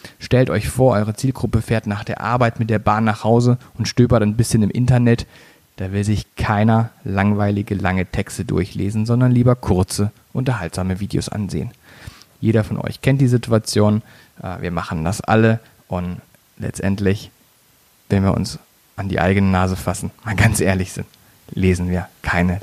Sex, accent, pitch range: male, German, 100-125 Hz